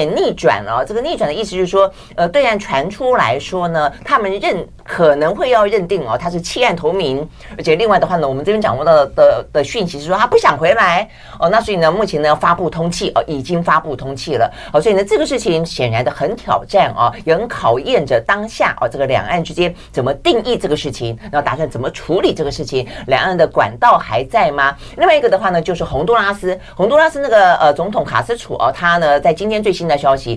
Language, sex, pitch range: Chinese, female, 150-210 Hz